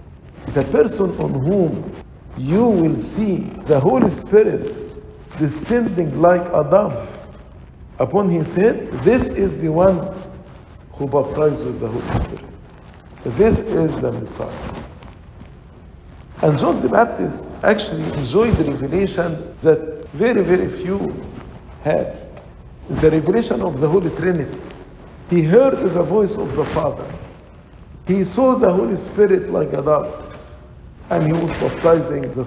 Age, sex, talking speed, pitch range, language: 50-69, male, 130 wpm, 130-185 Hz, English